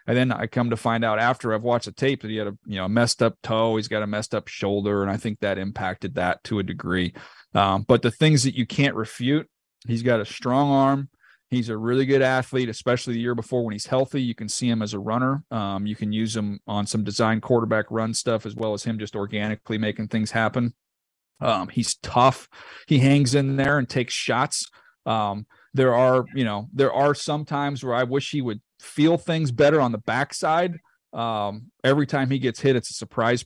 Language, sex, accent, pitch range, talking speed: English, male, American, 105-135 Hz, 230 wpm